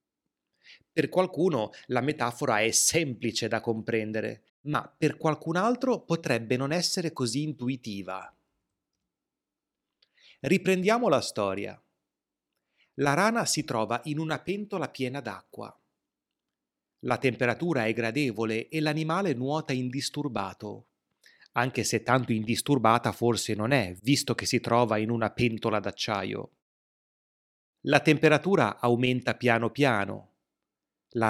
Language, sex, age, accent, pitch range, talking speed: Italian, male, 30-49, native, 115-150 Hz, 110 wpm